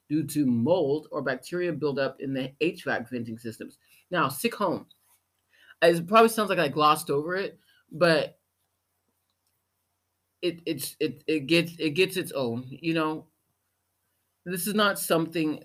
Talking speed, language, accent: 130 wpm, English, American